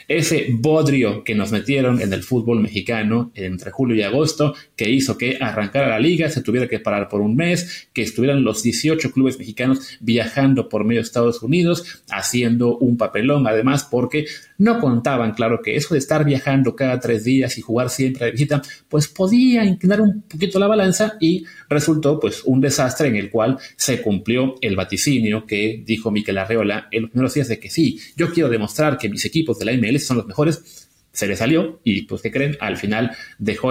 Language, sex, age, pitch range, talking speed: Spanish, male, 30-49, 110-150 Hz, 195 wpm